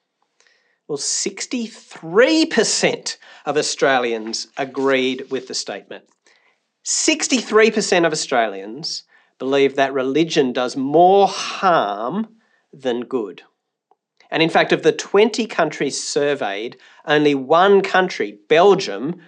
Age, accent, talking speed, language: 40-59, Australian, 95 wpm, English